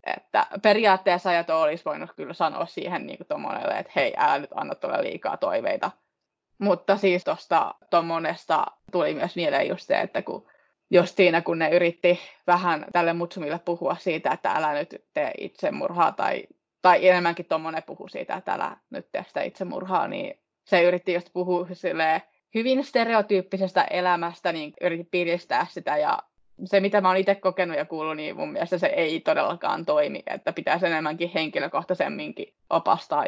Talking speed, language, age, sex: 155 wpm, Finnish, 20-39, female